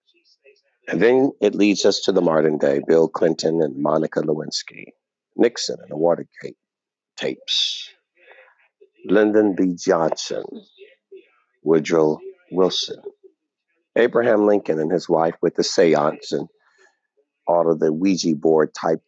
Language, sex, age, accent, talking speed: English, male, 50-69, American, 125 wpm